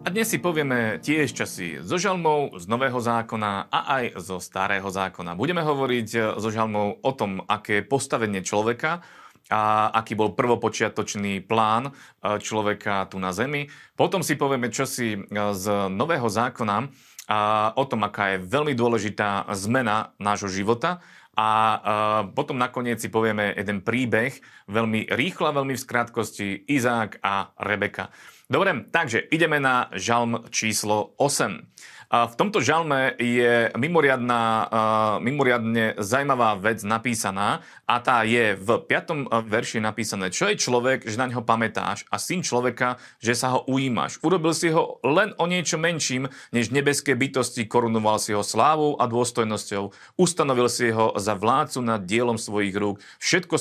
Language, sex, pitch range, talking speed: Slovak, male, 105-130 Hz, 150 wpm